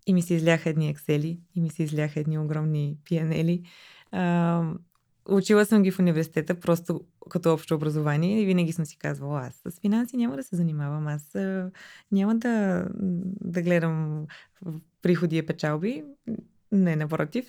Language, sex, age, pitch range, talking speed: Bulgarian, female, 20-39, 165-200 Hz, 150 wpm